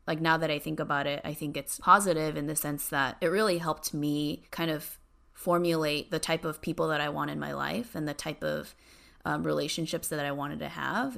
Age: 20-39